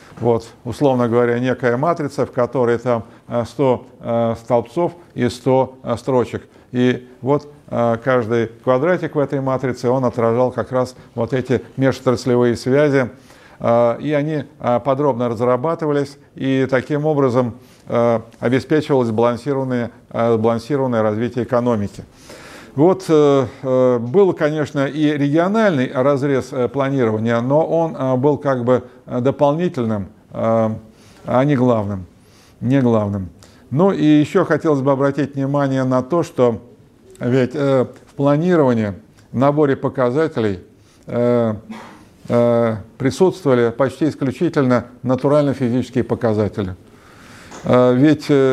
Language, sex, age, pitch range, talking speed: Russian, male, 50-69, 120-140 Hz, 95 wpm